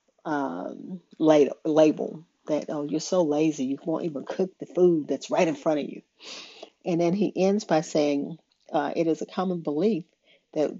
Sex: female